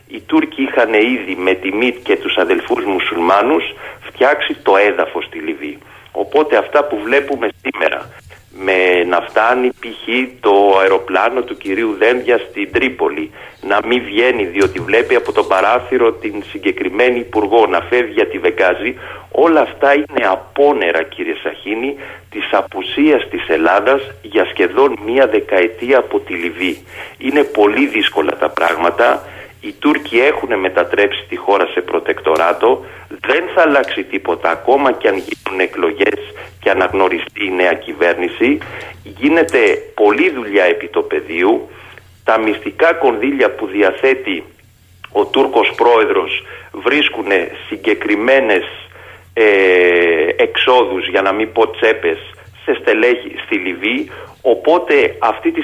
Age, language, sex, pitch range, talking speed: 40-59, Greek, male, 275-420 Hz, 130 wpm